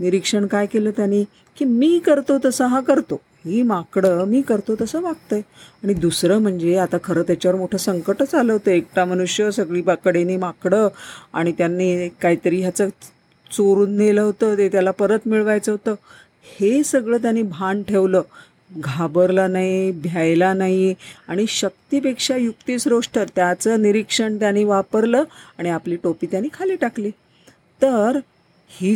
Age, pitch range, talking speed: 40-59, 180-230 Hz, 140 wpm